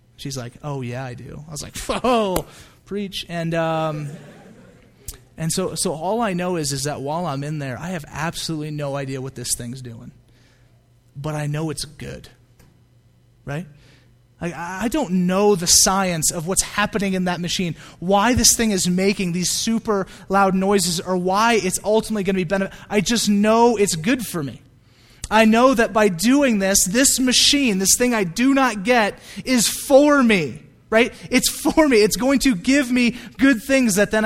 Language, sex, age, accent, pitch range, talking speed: English, male, 30-49, American, 150-220 Hz, 185 wpm